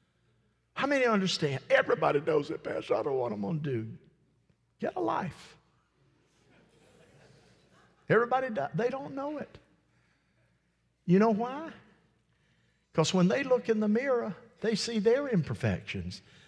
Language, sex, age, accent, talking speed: English, male, 60-79, American, 135 wpm